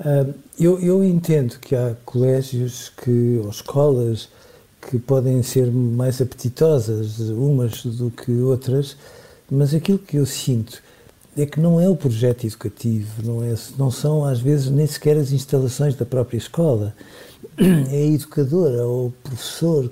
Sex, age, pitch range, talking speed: male, 50-69, 120-150 Hz, 140 wpm